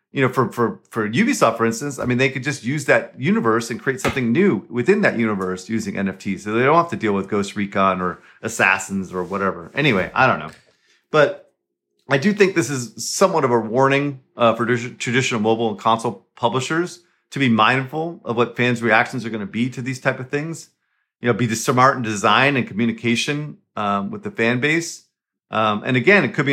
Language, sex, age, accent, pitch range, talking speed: English, male, 40-59, American, 105-140 Hz, 215 wpm